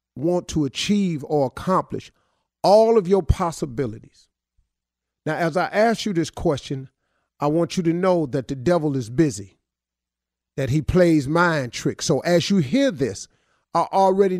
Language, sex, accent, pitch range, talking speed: English, male, American, 110-180 Hz, 160 wpm